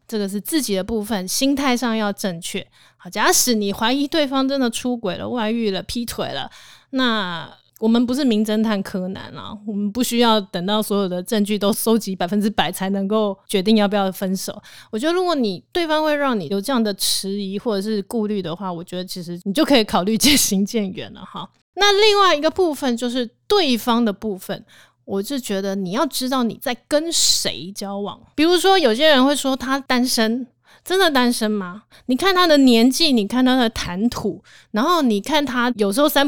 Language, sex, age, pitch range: Chinese, female, 20-39, 200-270 Hz